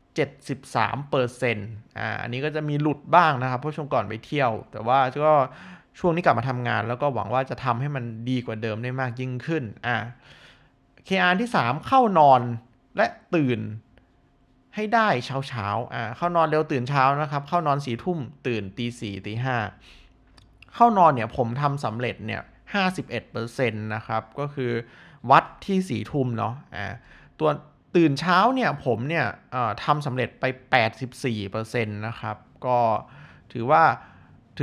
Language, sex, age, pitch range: Thai, male, 20-39, 115-150 Hz